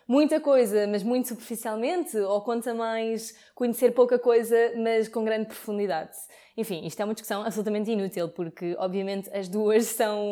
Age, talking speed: 20-39, 155 wpm